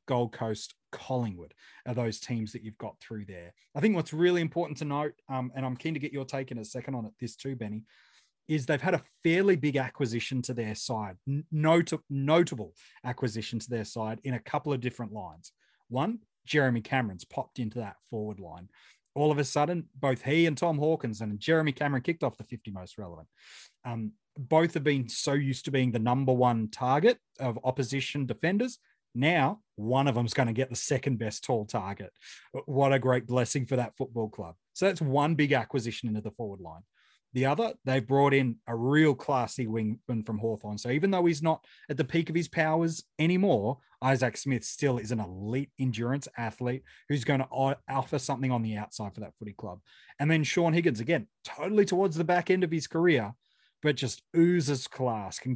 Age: 30-49